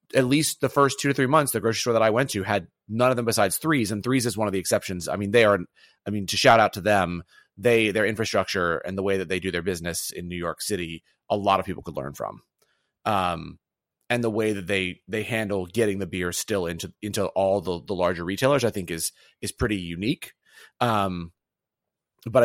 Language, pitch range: English, 100-120 Hz